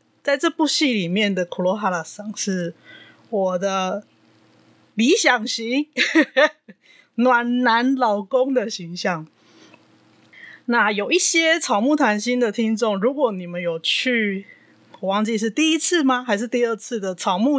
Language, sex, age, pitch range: Chinese, female, 20-39, 190-270 Hz